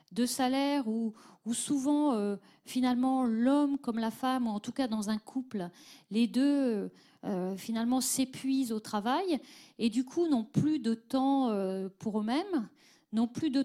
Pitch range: 215-270 Hz